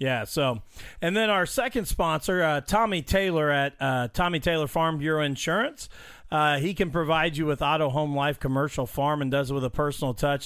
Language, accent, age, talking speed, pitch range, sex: English, American, 40-59, 200 wpm, 135-165 Hz, male